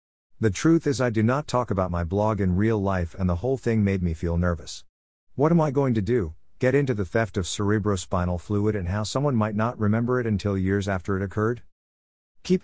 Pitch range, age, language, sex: 85-115 Hz, 50-69, English, male